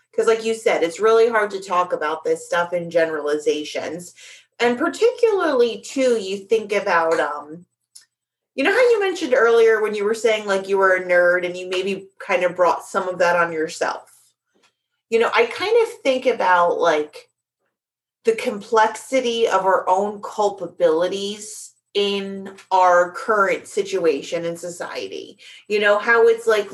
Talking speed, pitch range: 160 wpm, 185-270 Hz